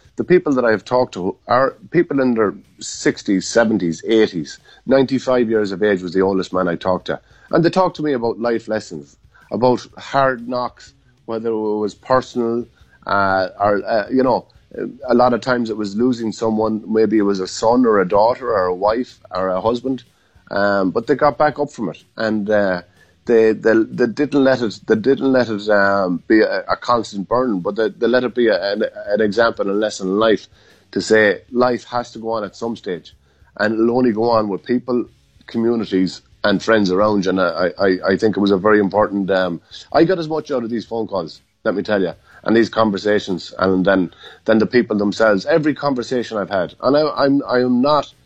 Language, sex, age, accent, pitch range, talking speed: English, male, 30-49, Irish, 100-125 Hz, 215 wpm